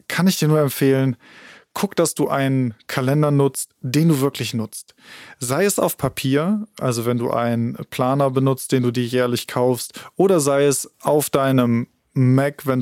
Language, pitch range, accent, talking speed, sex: German, 125-145 Hz, German, 175 wpm, male